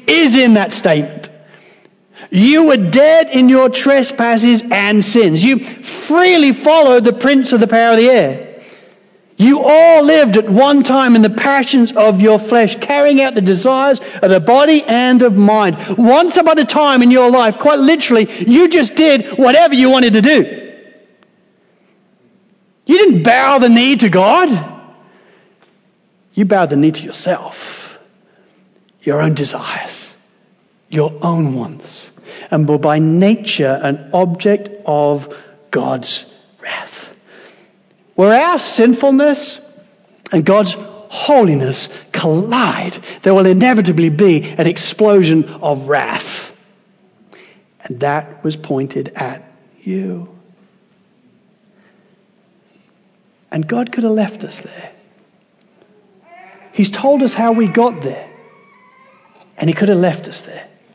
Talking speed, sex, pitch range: 130 wpm, male, 190-255 Hz